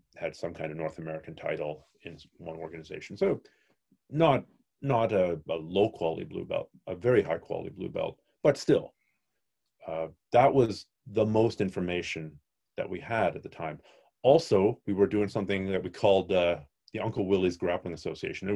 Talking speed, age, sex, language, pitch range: 175 wpm, 40-59, male, English, 85-135 Hz